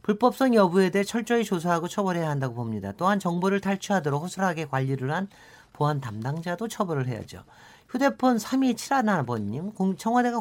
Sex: male